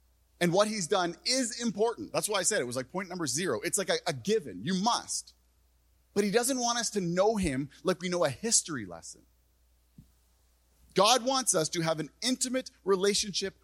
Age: 30-49